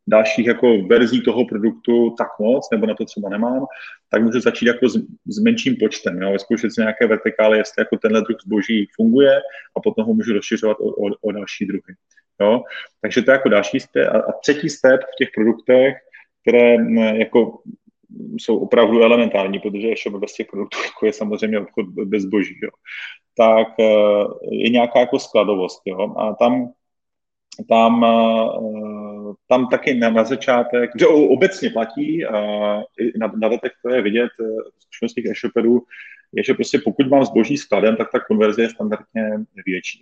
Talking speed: 155 wpm